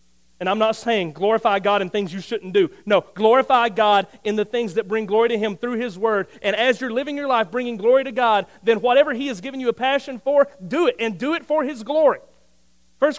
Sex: male